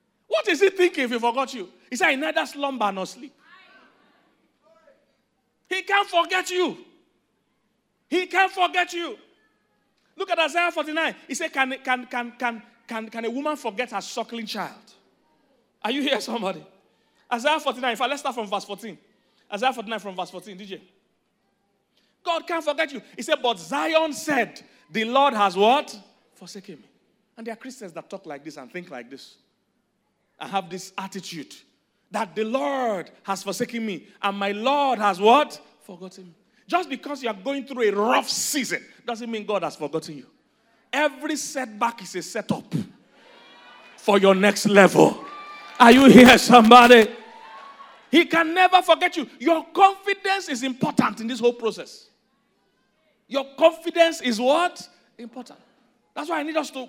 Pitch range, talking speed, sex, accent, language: 210-295 Hz, 165 wpm, male, Nigerian, English